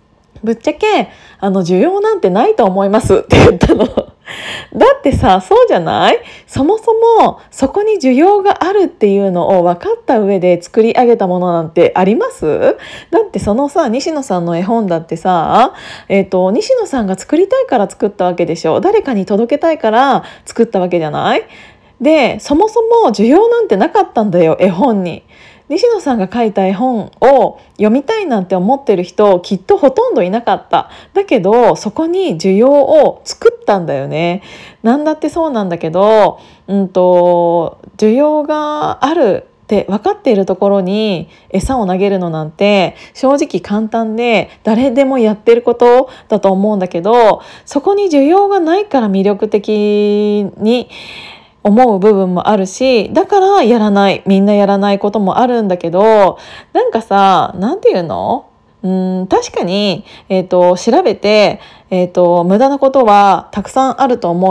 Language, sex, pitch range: Japanese, female, 190-290 Hz